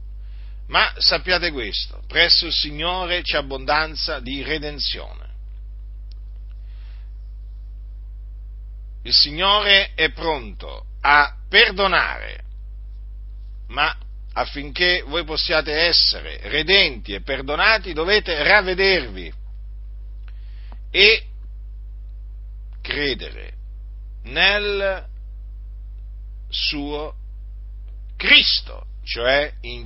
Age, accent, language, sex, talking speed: 50-69, native, Italian, male, 65 wpm